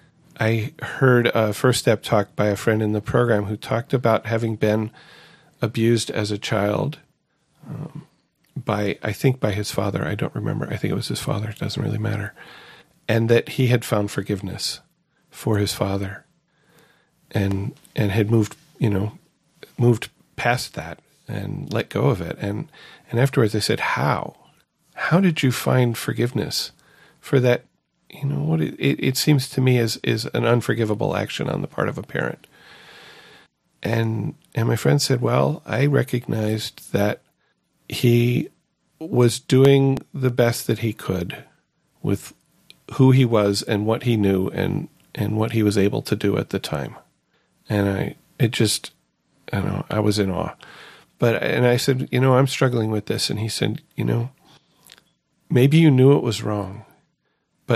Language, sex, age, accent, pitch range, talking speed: English, male, 40-59, American, 105-135 Hz, 170 wpm